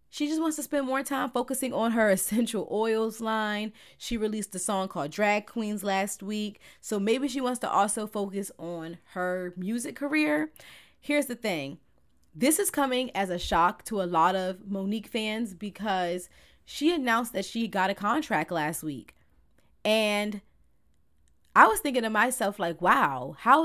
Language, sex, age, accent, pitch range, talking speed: English, female, 20-39, American, 185-250 Hz, 170 wpm